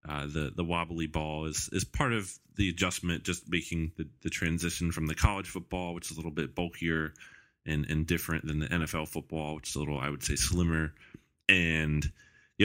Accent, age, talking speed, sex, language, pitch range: American, 20-39, 205 wpm, male, English, 80-95 Hz